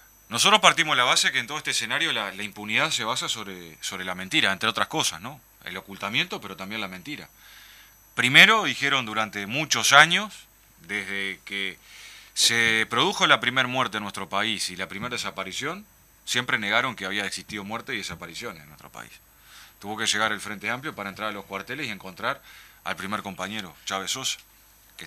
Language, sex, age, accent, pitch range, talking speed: Spanish, male, 30-49, Argentinian, 95-120 Hz, 185 wpm